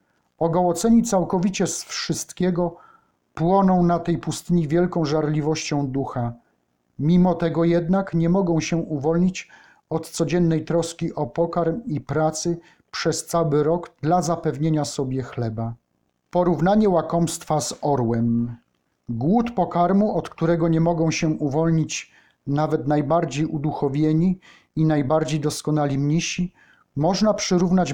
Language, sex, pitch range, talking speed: Polish, male, 150-175 Hz, 115 wpm